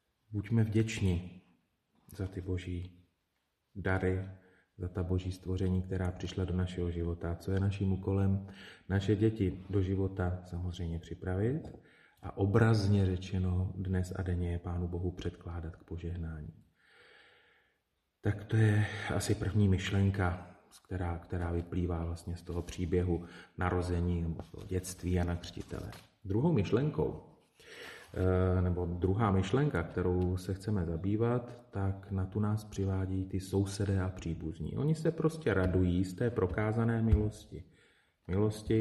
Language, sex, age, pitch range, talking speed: Slovak, male, 30-49, 90-100 Hz, 125 wpm